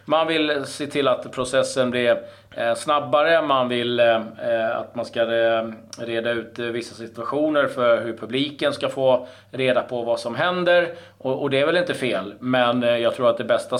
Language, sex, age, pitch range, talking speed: Swedish, male, 30-49, 115-135 Hz, 170 wpm